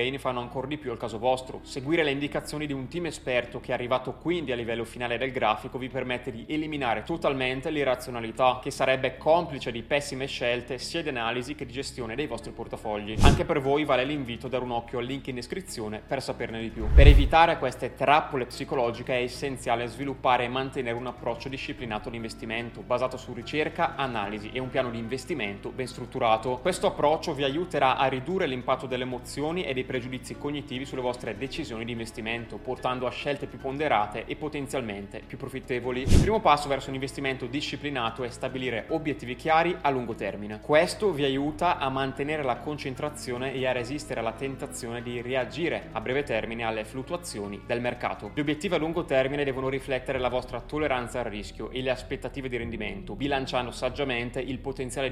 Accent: native